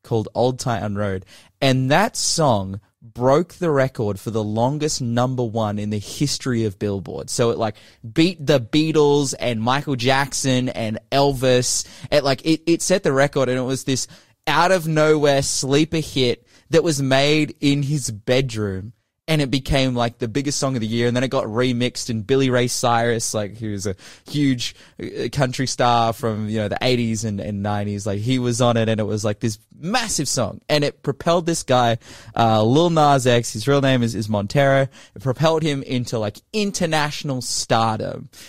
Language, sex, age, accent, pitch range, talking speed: English, male, 20-39, Australian, 110-135 Hz, 185 wpm